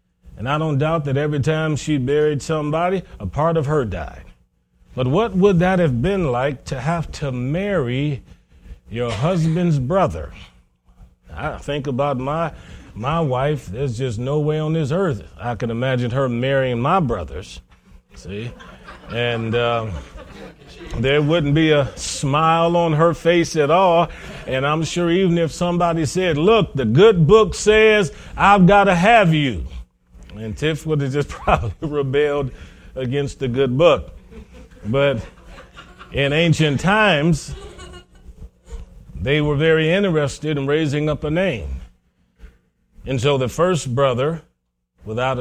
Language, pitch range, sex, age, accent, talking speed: English, 110-160 Hz, male, 40-59, American, 145 wpm